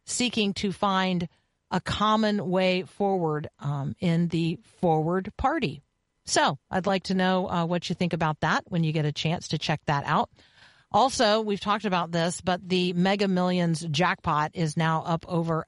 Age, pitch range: 50-69, 160-200 Hz